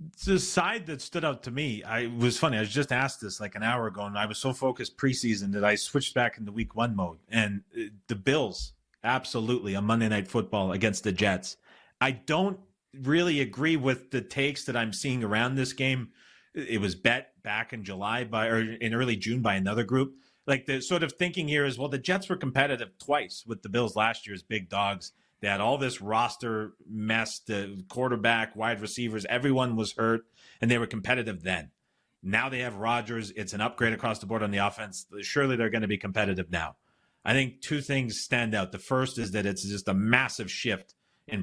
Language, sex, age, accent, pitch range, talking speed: English, male, 30-49, American, 105-130 Hz, 210 wpm